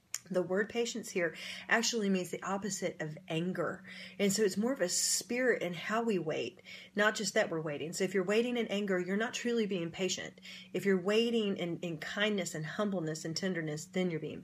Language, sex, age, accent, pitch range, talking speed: English, female, 30-49, American, 165-205 Hz, 210 wpm